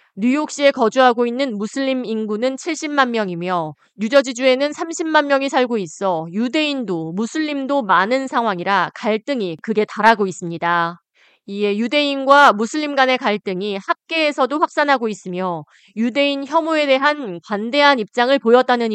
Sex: female